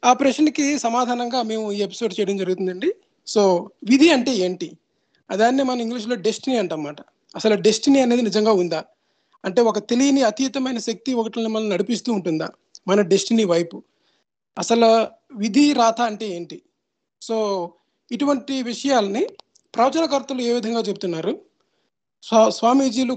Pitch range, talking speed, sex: 190-250 Hz, 120 wpm, male